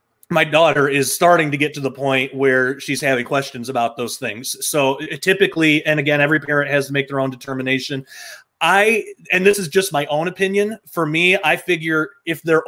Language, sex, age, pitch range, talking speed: English, male, 30-49, 140-170 Hz, 200 wpm